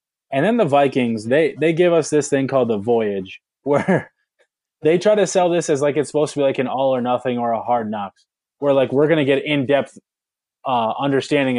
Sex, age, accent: male, 20-39, American